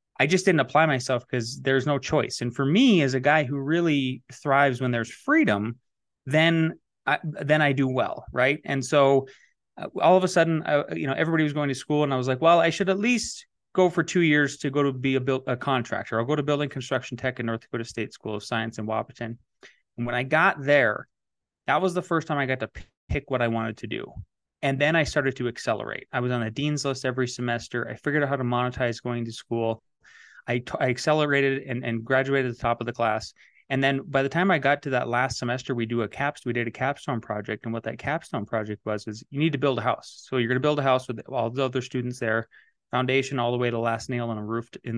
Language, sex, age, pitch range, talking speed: English, male, 30-49, 120-145 Hz, 255 wpm